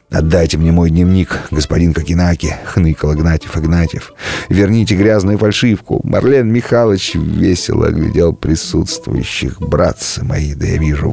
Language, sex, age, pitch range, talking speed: Russian, male, 30-49, 80-105 Hz, 120 wpm